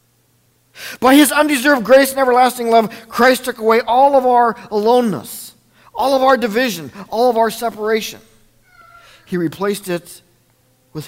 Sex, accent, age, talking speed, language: male, American, 50-69, 140 wpm, English